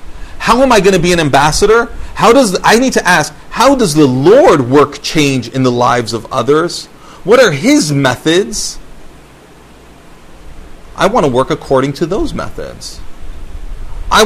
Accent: American